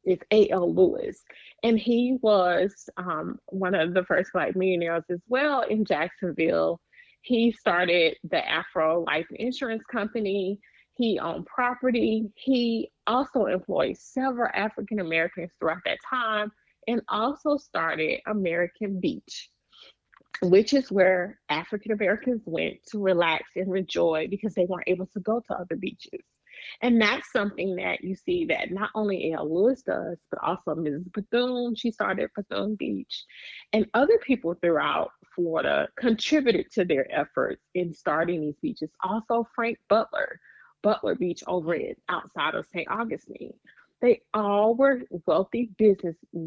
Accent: American